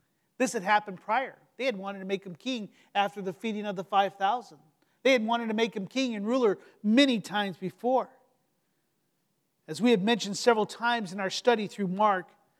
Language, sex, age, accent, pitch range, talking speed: English, male, 40-59, American, 205-255 Hz, 190 wpm